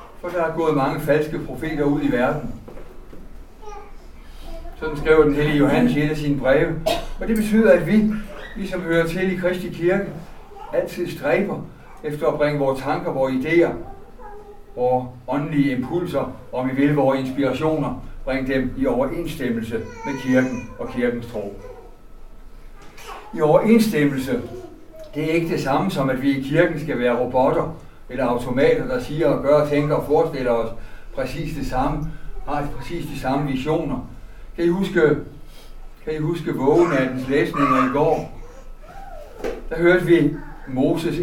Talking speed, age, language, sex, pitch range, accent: 155 wpm, 60-79, Danish, male, 135-170 Hz, native